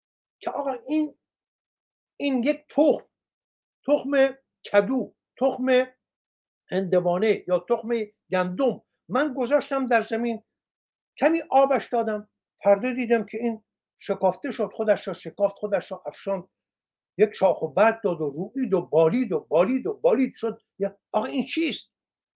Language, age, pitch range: Persian, 60-79, 195-270 Hz